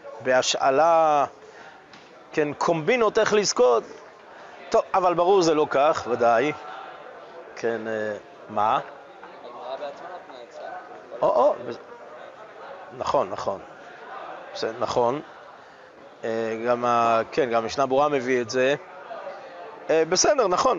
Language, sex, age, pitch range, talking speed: Hebrew, male, 30-49, 130-175 Hz, 70 wpm